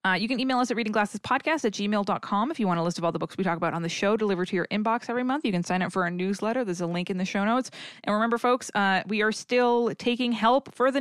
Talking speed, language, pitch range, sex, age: 300 wpm, English, 180-230 Hz, female, 20-39